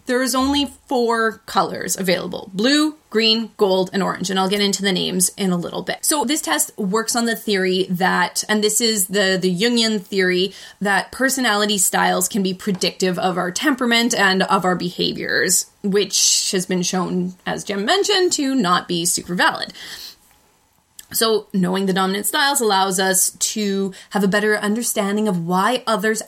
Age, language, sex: 20-39, English, female